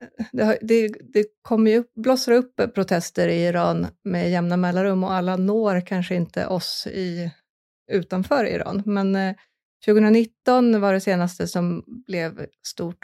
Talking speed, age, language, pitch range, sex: 145 wpm, 30-49, Swedish, 180-205 Hz, female